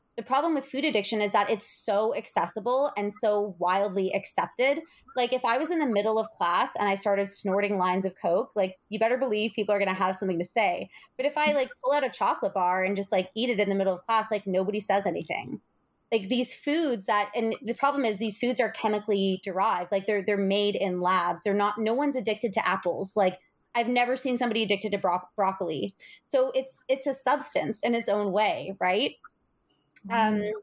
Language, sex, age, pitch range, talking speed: English, female, 20-39, 195-240 Hz, 220 wpm